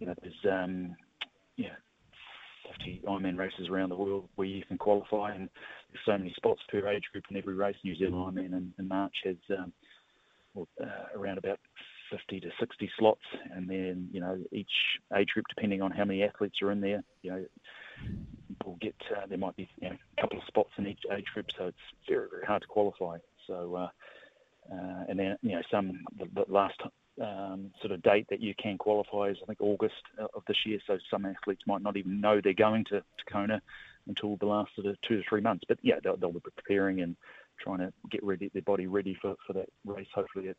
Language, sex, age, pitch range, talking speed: English, male, 30-49, 95-105 Hz, 220 wpm